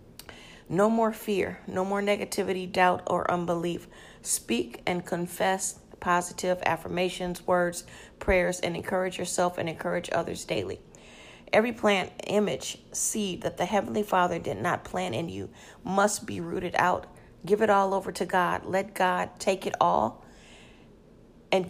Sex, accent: female, American